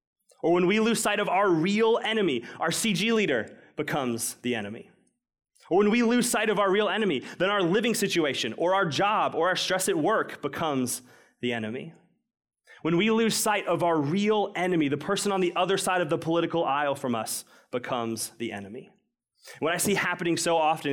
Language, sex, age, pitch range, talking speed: English, male, 20-39, 140-205 Hz, 195 wpm